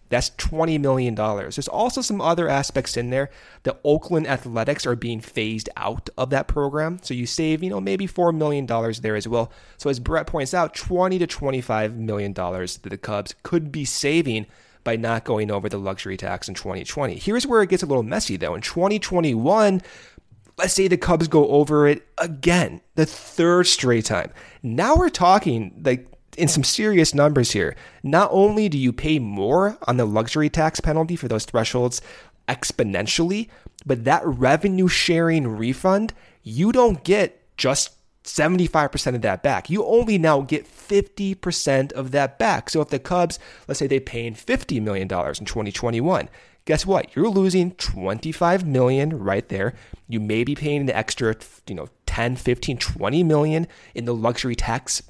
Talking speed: 170 wpm